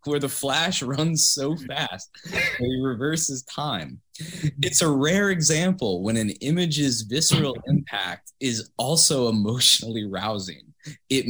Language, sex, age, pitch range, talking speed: English, male, 20-39, 105-150 Hz, 120 wpm